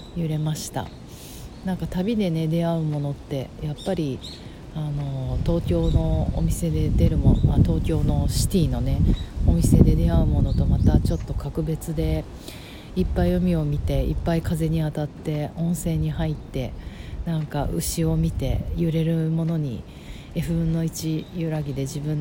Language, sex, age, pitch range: Japanese, female, 40-59, 125-165 Hz